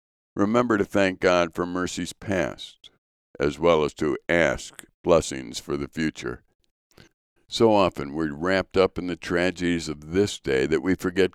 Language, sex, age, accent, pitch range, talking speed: English, male, 60-79, American, 75-90 Hz, 160 wpm